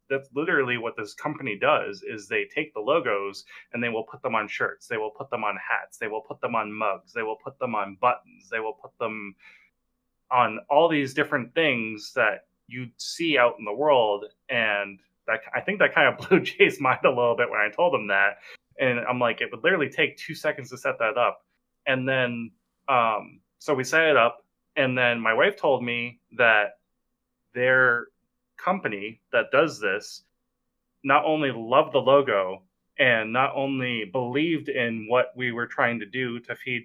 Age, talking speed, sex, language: 20-39, 195 wpm, male, English